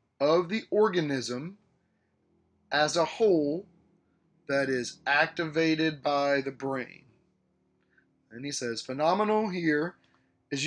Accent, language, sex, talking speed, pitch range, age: American, English, male, 100 wpm, 140-175 Hz, 40-59